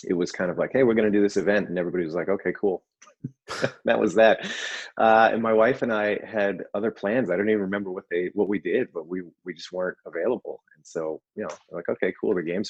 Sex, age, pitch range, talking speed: male, 30-49, 85-105 Hz, 255 wpm